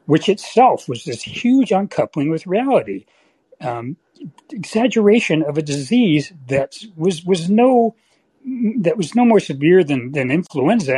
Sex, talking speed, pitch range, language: male, 135 wpm, 155-235 Hz, English